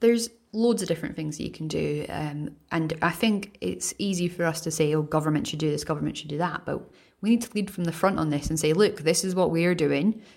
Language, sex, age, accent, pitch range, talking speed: English, female, 30-49, British, 150-180 Hz, 270 wpm